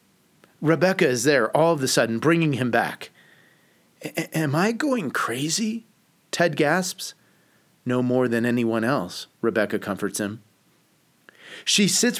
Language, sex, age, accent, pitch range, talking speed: English, male, 40-59, American, 120-175 Hz, 130 wpm